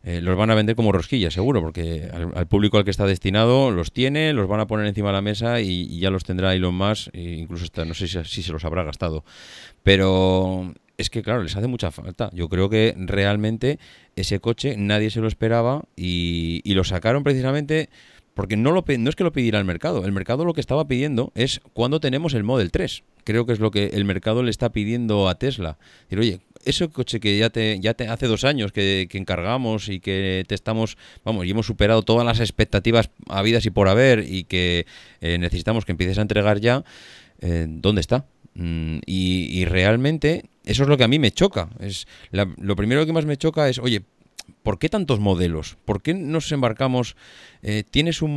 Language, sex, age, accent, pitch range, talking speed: Spanish, male, 30-49, Spanish, 95-120 Hz, 220 wpm